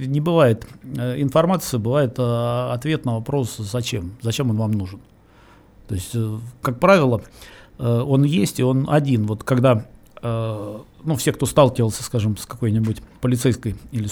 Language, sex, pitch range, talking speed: Russian, male, 110-140 Hz, 135 wpm